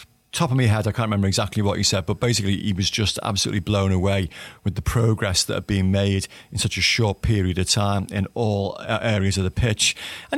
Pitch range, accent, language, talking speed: 100-115 Hz, British, English, 230 wpm